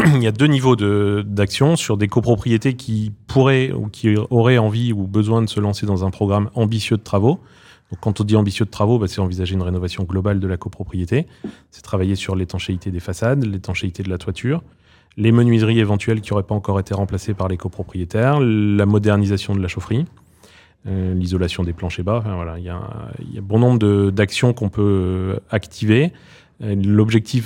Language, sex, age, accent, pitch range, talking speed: French, male, 30-49, French, 95-110 Hz, 200 wpm